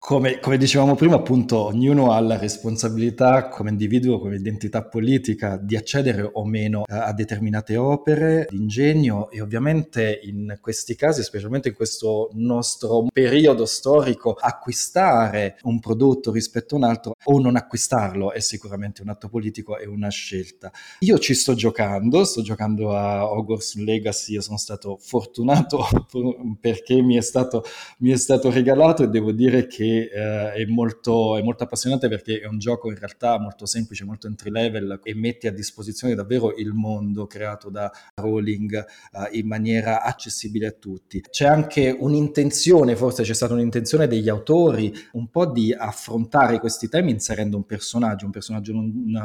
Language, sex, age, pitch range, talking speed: Italian, male, 20-39, 105-125 Hz, 160 wpm